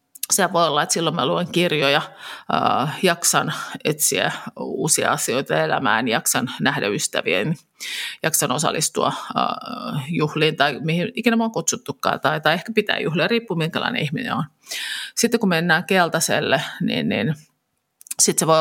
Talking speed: 150 wpm